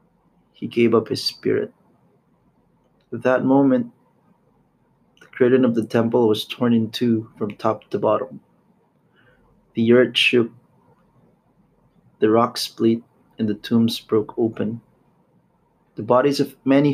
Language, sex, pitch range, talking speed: English, male, 115-130 Hz, 130 wpm